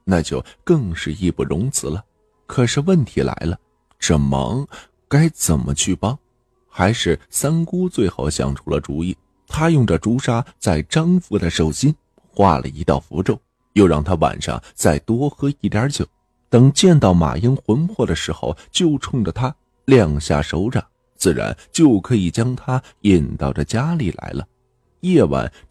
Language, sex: Chinese, male